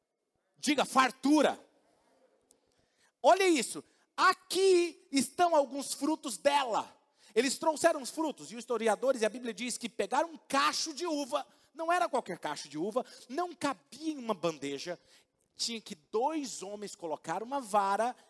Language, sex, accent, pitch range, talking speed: Portuguese, male, Brazilian, 205-330 Hz, 145 wpm